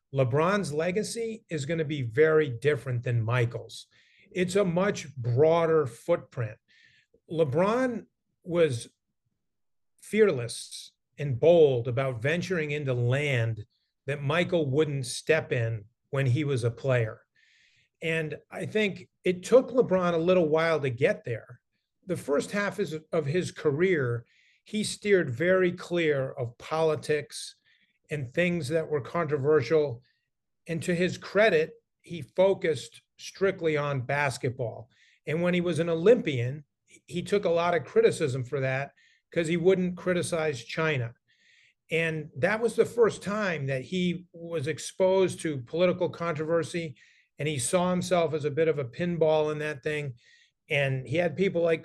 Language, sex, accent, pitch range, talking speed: English, male, American, 135-180 Hz, 140 wpm